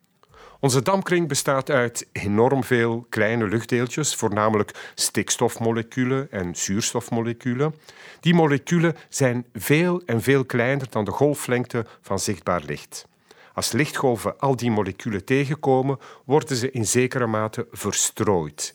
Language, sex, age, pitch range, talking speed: Dutch, male, 50-69, 110-140 Hz, 120 wpm